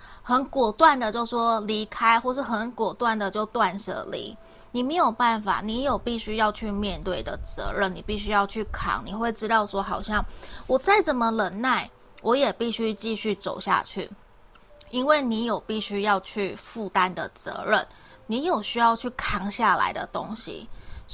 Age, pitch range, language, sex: 30-49, 195-245 Hz, Chinese, female